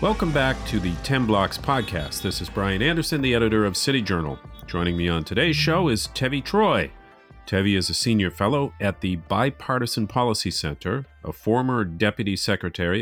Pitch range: 85-110 Hz